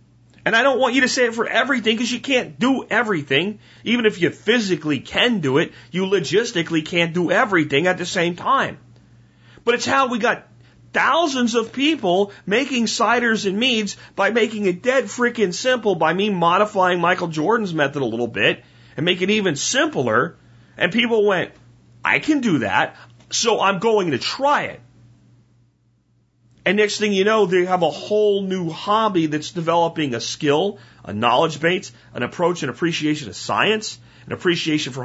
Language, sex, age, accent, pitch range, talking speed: French, male, 40-59, American, 145-220 Hz, 175 wpm